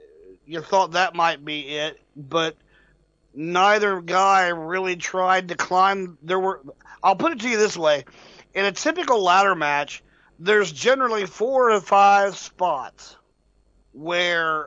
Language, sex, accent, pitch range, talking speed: English, male, American, 160-200 Hz, 140 wpm